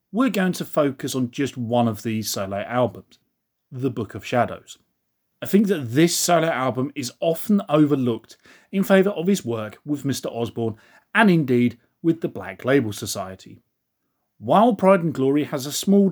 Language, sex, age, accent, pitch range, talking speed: English, male, 30-49, British, 115-170 Hz, 170 wpm